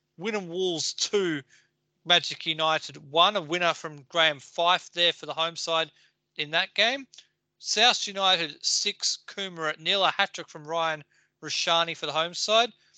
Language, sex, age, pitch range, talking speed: English, male, 40-59, 160-190 Hz, 155 wpm